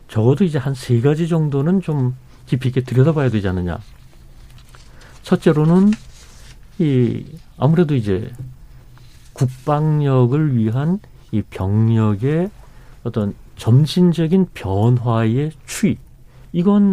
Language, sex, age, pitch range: Korean, male, 40-59, 120-170 Hz